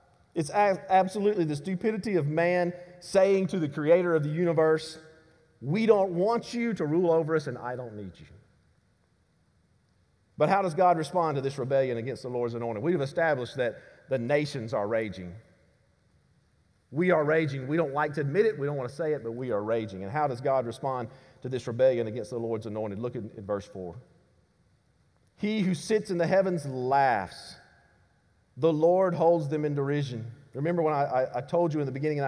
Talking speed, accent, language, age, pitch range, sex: 195 wpm, American, English, 40-59, 120-160 Hz, male